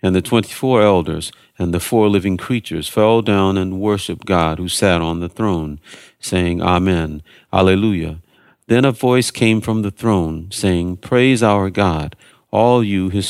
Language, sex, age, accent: English, male, 50-69, American